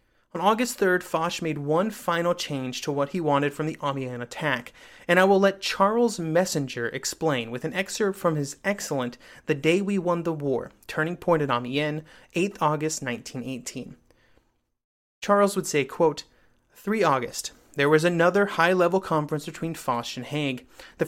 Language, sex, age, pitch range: English, male, 30-49, 150-190 Hz